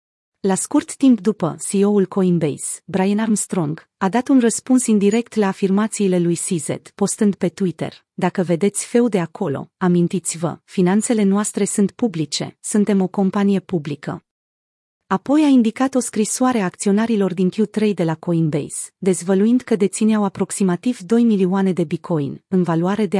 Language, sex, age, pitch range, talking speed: Romanian, female, 30-49, 175-225 Hz, 145 wpm